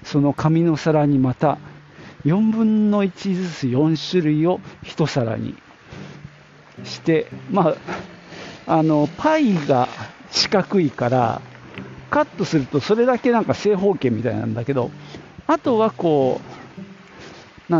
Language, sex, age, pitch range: Japanese, male, 50-69, 130-195 Hz